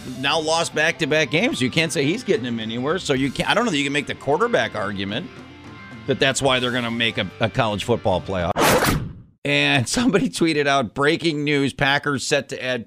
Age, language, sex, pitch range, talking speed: 40-59, English, male, 115-145 Hz, 225 wpm